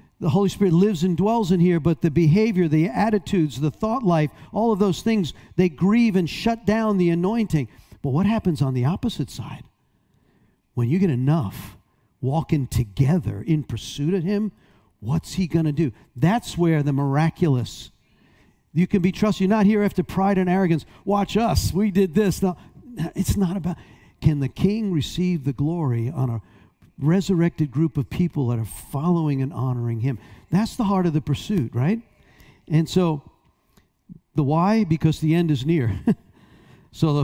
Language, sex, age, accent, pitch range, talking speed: English, male, 50-69, American, 150-200 Hz, 175 wpm